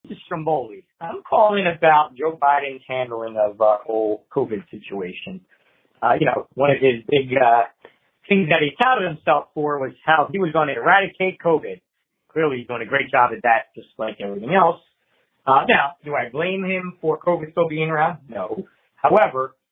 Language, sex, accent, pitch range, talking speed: English, male, American, 135-180 Hz, 185 wpm